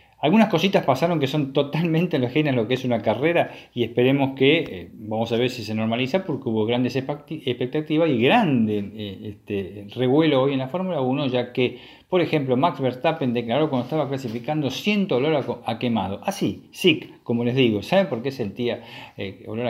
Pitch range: 110-150 Hz